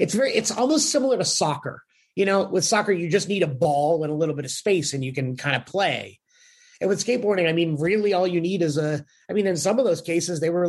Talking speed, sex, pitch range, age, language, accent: 270 wpm, male, 145-185 Hz, 30-49, English, American